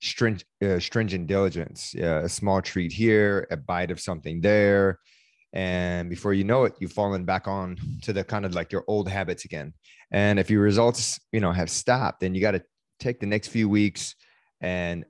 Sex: male